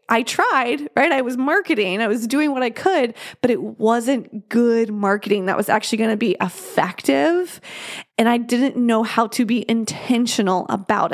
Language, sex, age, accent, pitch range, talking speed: English, female, 20-39, American, 210-265 Hz, 180 wpm